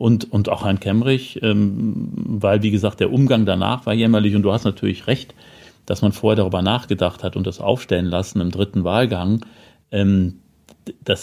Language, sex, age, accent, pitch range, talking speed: German, male, 40-59, German, 100-125 Hz, 170 wpm